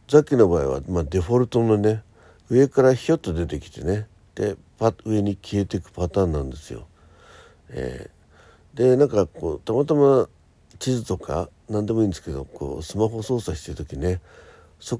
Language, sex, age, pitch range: Japanese, male, 60-79, 85-125 Hz